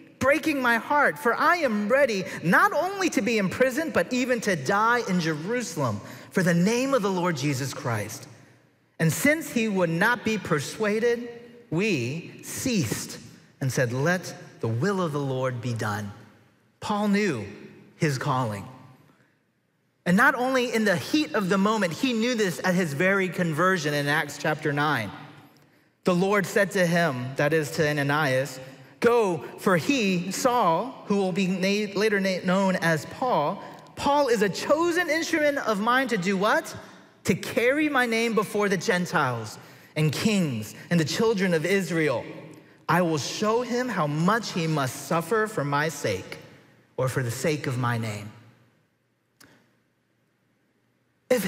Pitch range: 150-230 Hz